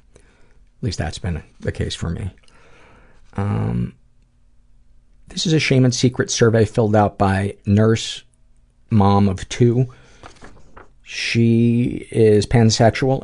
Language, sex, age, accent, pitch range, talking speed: English, male, 50-69, American, 100-115 Hz, 120 wpm